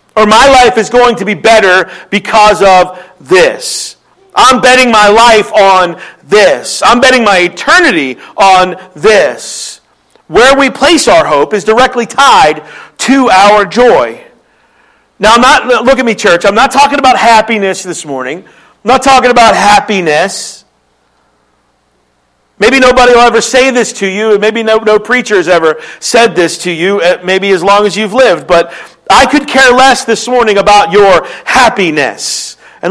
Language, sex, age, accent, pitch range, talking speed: English, male, 50-69, American, 185-250 Hz, 160 wpm